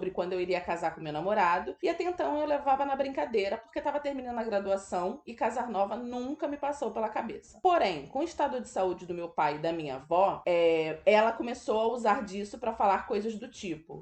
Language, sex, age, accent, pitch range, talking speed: Portuguese, female, 20-39, Brazilian, 195-270 Hz, 220 wpm